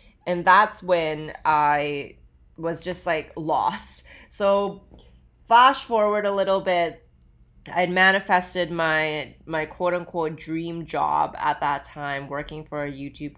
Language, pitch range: English, 145-180 Hz